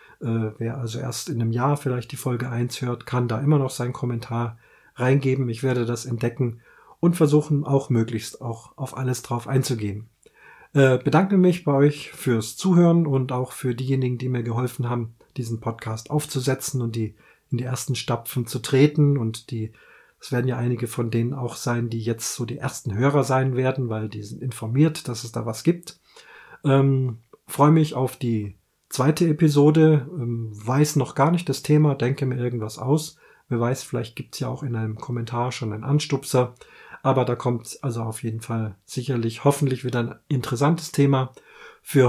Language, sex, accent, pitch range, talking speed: German, male, German, 120-140 Hz, 185 wpm